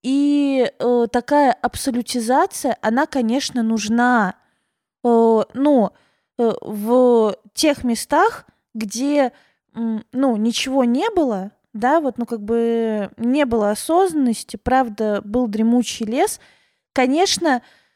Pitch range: 220-265 Hz